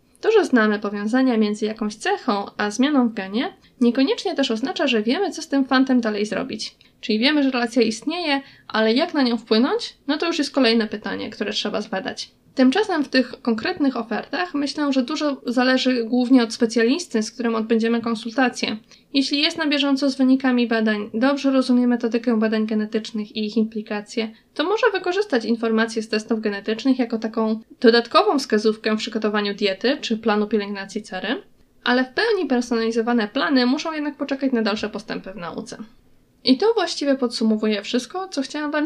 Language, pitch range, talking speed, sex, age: Polish, 220-280 Hz, 170 wpm, female, 10-29